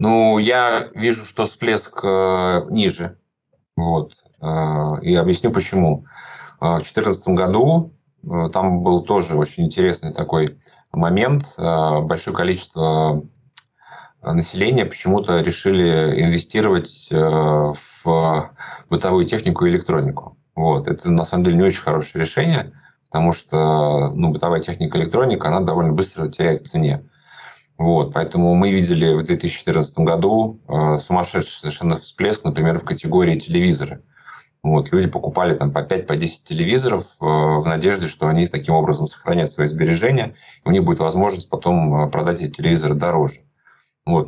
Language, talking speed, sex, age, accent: Russian, 140 wpm, male, 30-49, native